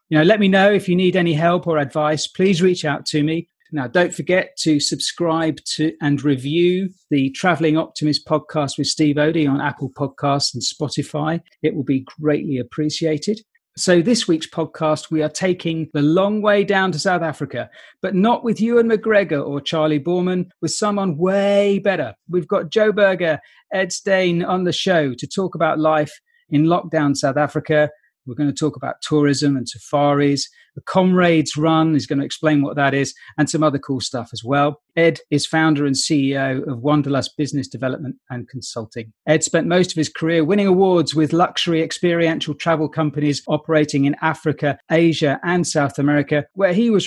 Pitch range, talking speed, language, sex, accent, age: 145-175 Hz, 185 wpm, English, male, British, 40-59